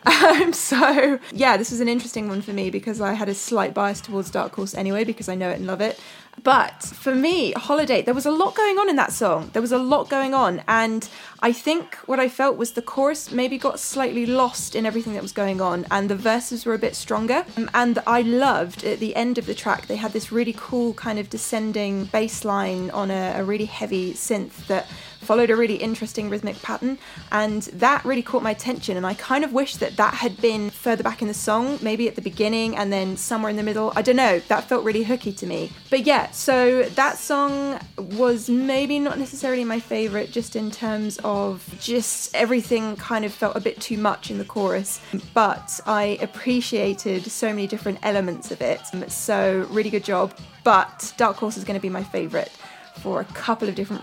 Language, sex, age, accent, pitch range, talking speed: English, female, 20-39, British, 205-250 Hz, 220 wpm